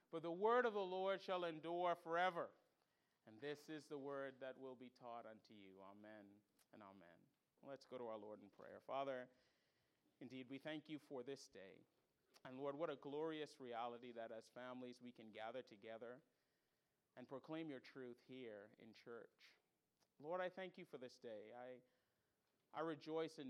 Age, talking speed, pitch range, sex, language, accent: 40-59, 175 wpm, 120-150 Hz, male, English, American